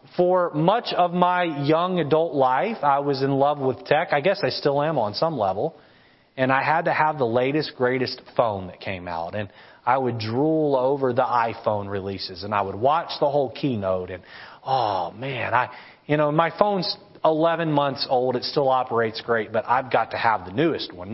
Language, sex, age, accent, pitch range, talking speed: English, male, 30-49, American, 130-175 Hz, 200 wpm